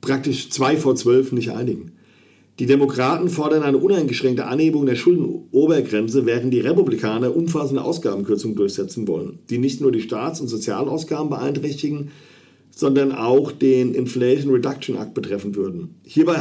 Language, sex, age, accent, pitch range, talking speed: German, male, 50-69, German, 125-150 Hz, 140 wpm